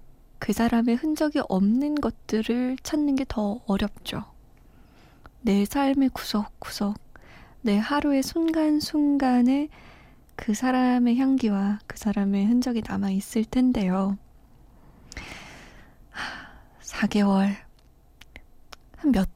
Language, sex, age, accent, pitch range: Korean, female, 20-39, native, 195-265 Hz